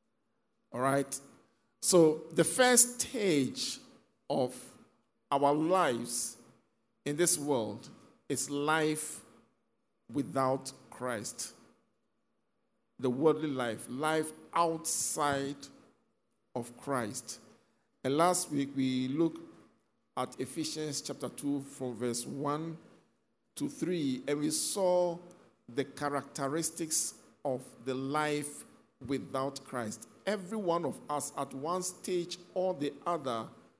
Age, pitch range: 50-69, 125-165 Hz